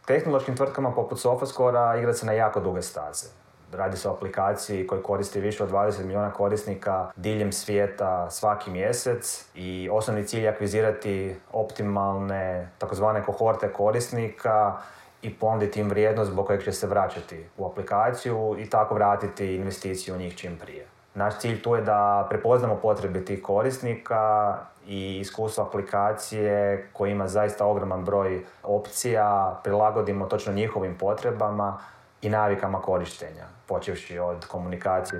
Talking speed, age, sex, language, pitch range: 140 wpm, 30-49, male, Croatian, 95-110 Hz